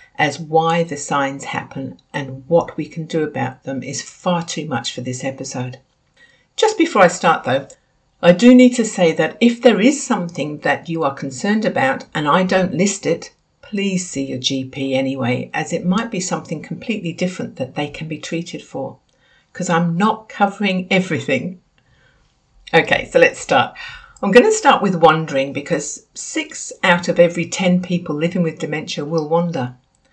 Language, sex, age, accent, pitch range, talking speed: English, female, 60-79, British, 155-215 Hz, 175 wpm